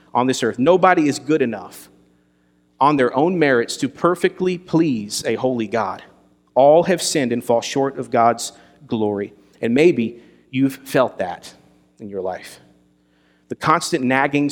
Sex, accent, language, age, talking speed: male, American, English, 40-59, 155 wpm